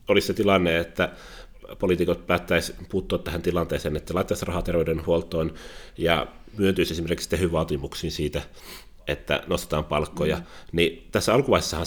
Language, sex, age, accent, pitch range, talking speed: Finnish, male, 30-49, native, 85-100 Hz, 120 wpm